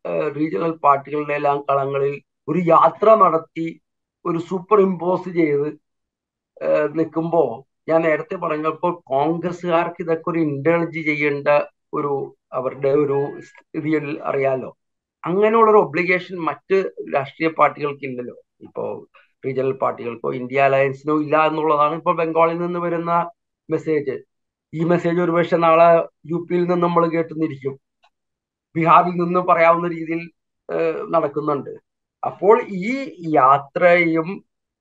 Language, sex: Malayalam, male